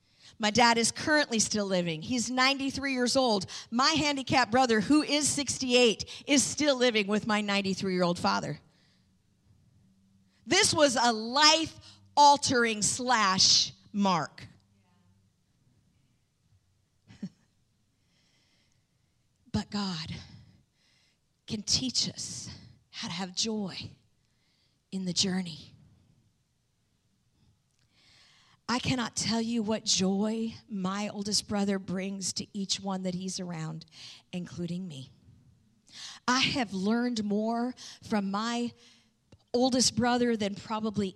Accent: American